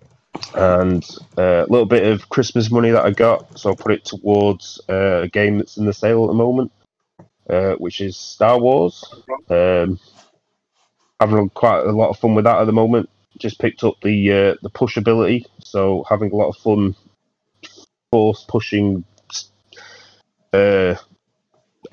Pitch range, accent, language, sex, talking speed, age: 90-110 Hz, British, English, male, 160 wpm, 30-49